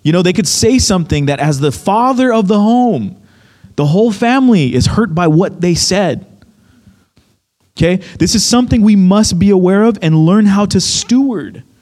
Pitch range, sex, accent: 130-215 Hz, male, American